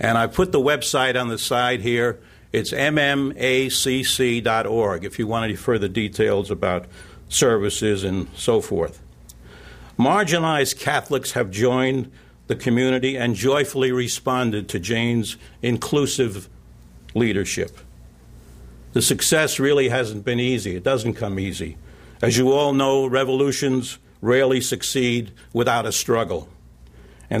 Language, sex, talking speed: English, male, 125 wpm